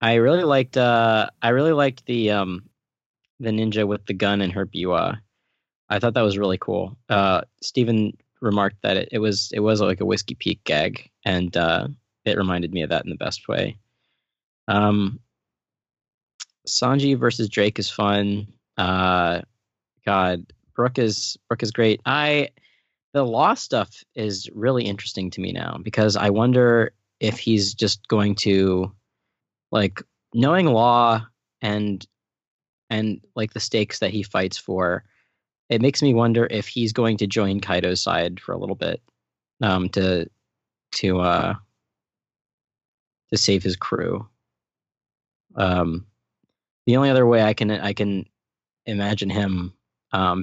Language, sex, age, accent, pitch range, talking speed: English, male, 20-39, American, 95-115 Hz, 150 wpm